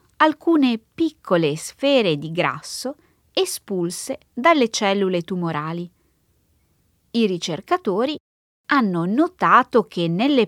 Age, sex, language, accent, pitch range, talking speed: 30-49, female, Italian, native, 170-260 Hz, 85 wpm